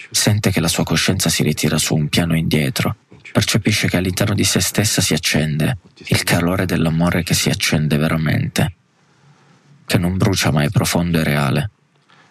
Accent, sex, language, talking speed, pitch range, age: native, male, Italian, 165 wpm, 85-110 Hz, 20-39